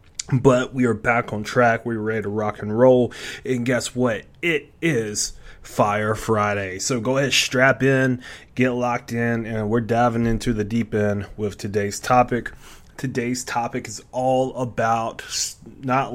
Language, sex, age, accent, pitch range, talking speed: English, male, 20-39, American, 110-130 Hz, 160 wpm